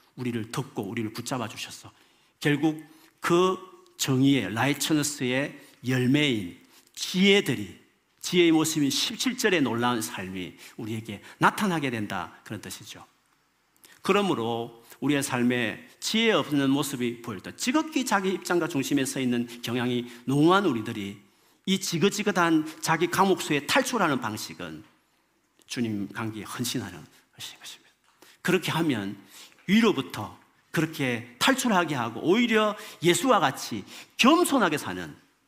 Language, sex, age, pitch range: Korean, male, 40-59, 110-170 Hz